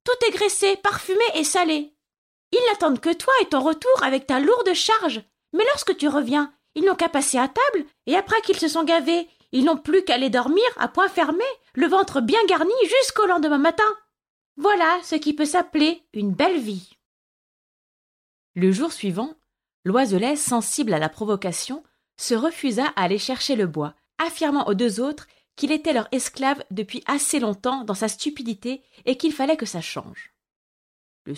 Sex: female